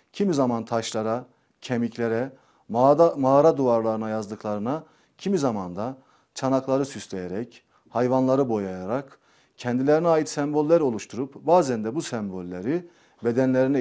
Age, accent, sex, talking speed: 40-59, native, male, 105 wpm